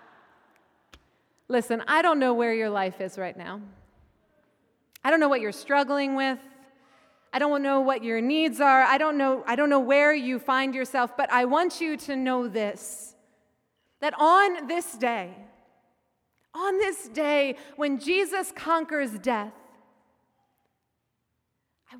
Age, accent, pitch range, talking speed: 30-49, American, 250-325 Hz, 145 wpm